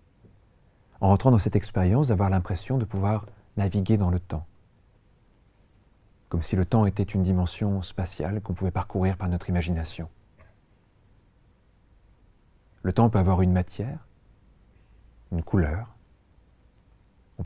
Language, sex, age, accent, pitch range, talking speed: French, male, 40-59, French, 90-110 Hz, 125 wpm